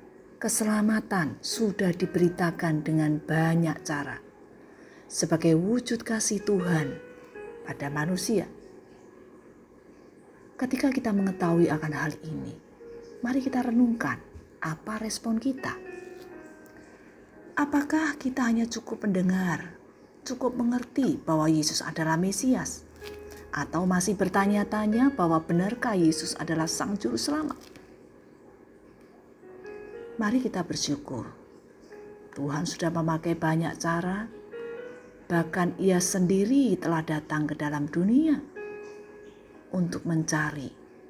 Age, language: 40-59, Indonesian